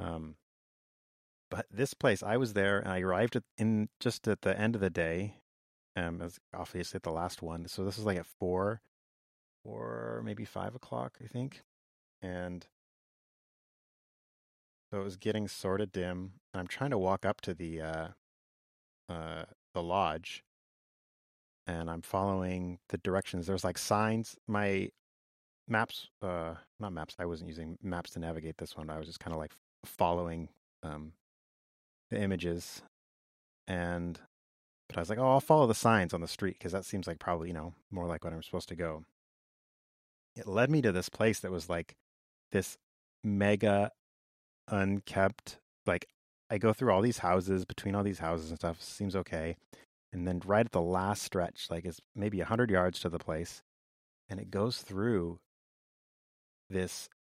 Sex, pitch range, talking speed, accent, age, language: male, 80-105 Hz, 175 wpm, American, 30-49, English